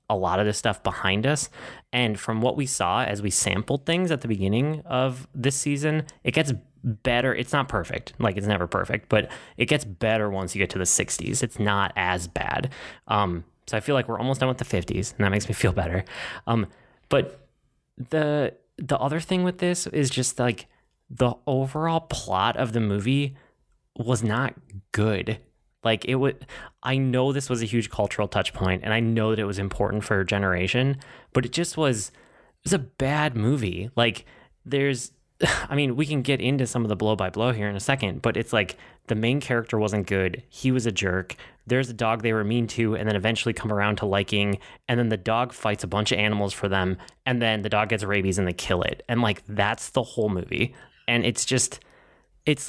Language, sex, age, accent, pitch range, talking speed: English, male, 20-39, American, 105-130 Hz, 215 wpm